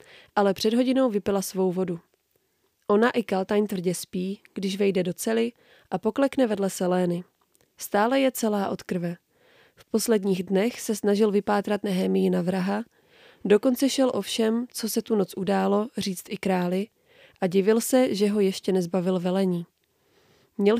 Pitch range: 195-240 Hz